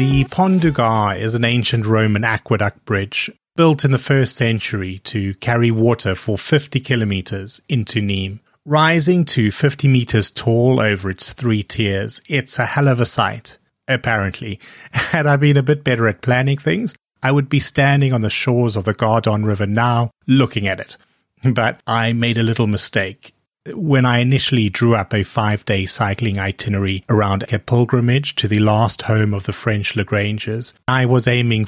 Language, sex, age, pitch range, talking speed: English, male, 30-49, 105-130 Hz, 175 wpm